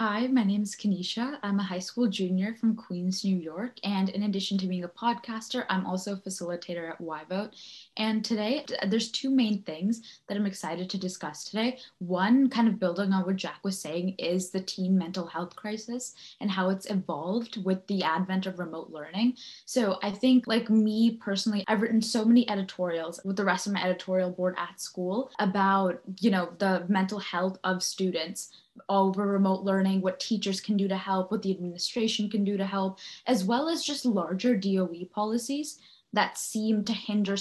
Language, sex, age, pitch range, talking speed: English, female, 10-29, 185-225 Hz, 190 wpm